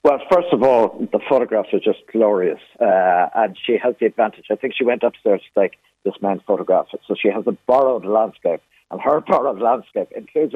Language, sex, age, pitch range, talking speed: English, male, 60-79, 115-170 Hz, 205 wpm